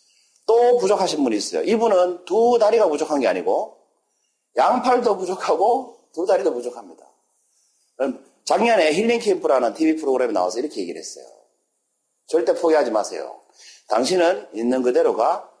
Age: 40-59